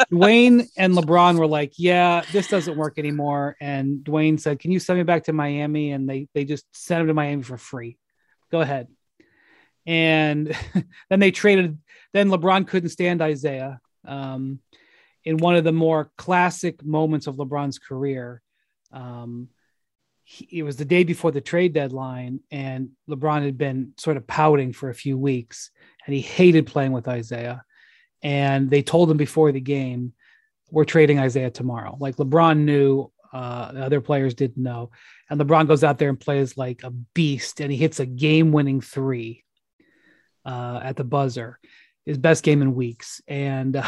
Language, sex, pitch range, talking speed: English, male, 135-165 Hz, 170 wpm